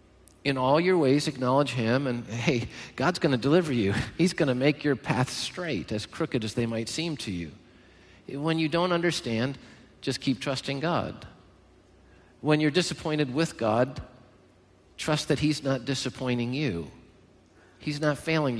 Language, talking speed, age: English, 160 wpm, 50-69